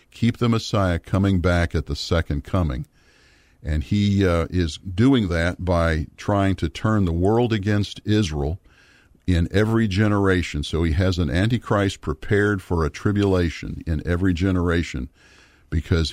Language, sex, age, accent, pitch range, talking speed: English, male, 50-69, American, 80-100 Hz, 145 wpm